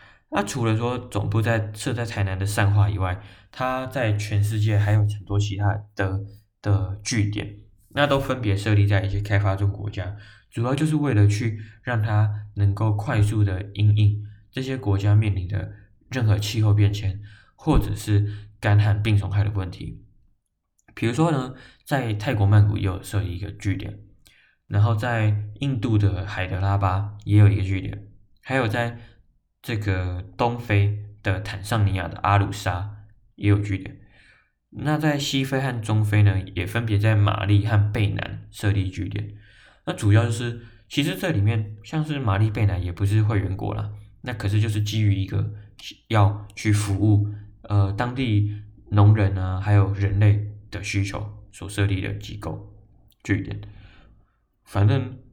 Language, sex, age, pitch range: Chinese, male, 20-39, 100-110 Hz